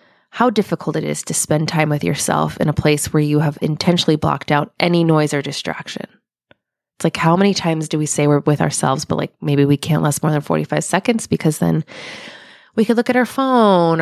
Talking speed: 220 wpm